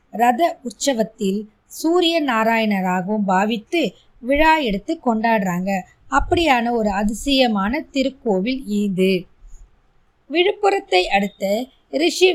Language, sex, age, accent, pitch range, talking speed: Tamil, female, 20-39, native, 205-285 Hz, 80 wpm